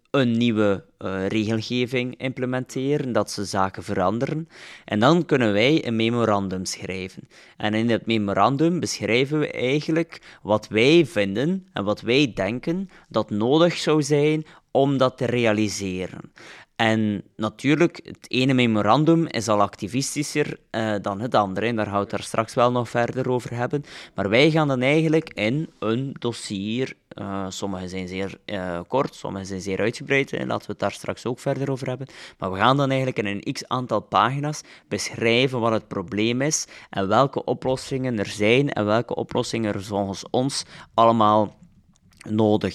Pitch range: 100-135 Hz